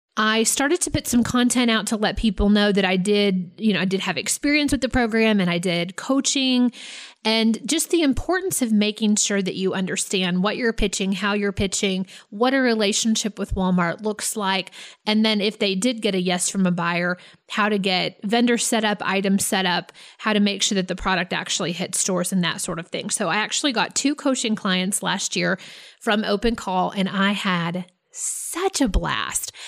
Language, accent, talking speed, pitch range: English, American, 210 wpm, 185-230 Hz